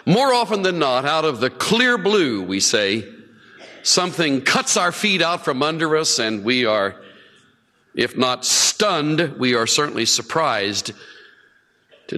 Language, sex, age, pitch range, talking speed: English, male, 50-69, 130-180 Hz, 150 wpm